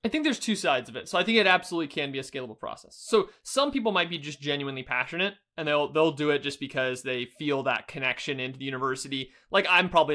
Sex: male